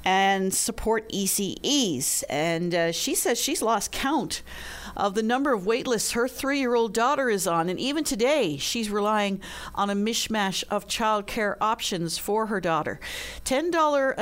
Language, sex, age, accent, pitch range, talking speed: English, female, 50-69, American, 170-230 Hz, 150 wpm